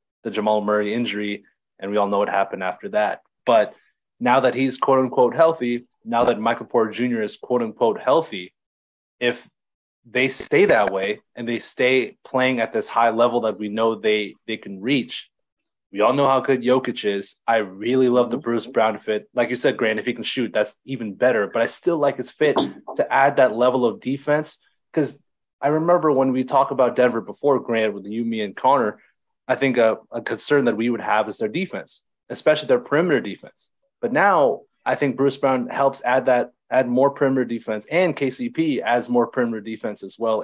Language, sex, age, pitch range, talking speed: English, male, 20-39, 110-140 Hz, 200 wpm